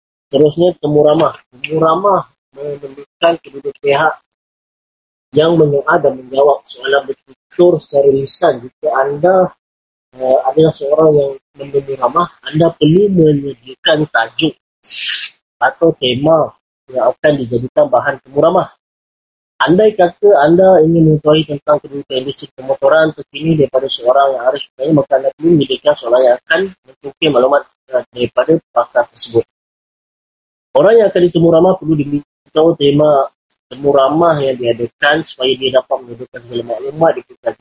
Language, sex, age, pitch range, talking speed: Malay, male, 20-39, 130-165 Hz, 125 wpm